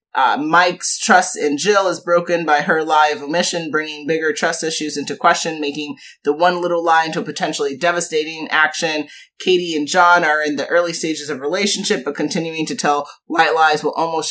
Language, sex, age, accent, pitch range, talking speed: English, male, 30-49, American, 145-175 Hz, 195 wpm